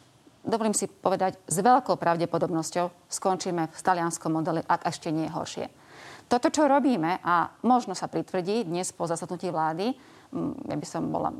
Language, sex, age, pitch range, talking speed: Slovak, female, 30-49, 175-220 Hz, 160 wpm